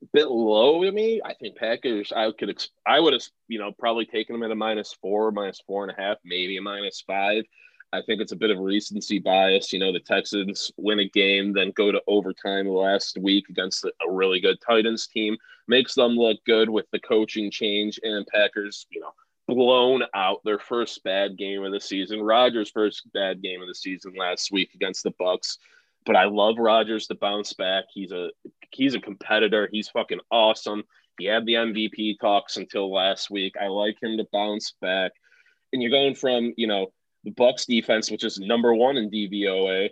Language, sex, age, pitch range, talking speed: English, male, 20-39, 100-115 Hz, 200 wpm